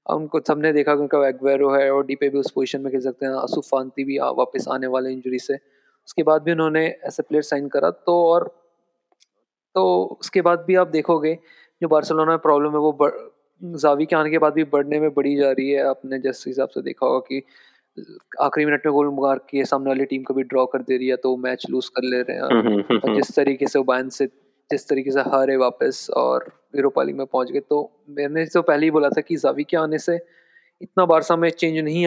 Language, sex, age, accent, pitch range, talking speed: Hindi, male, 20-39, native, 140-170 Hz, 200 wpm